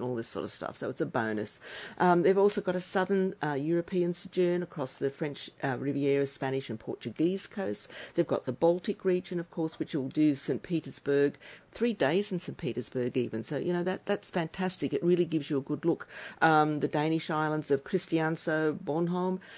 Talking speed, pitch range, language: 200 wpm, 140-185 Hz, English